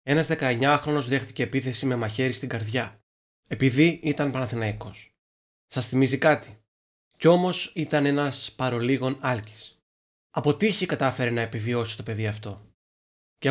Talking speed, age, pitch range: 130 wpm, 30-49, 120-150 Hz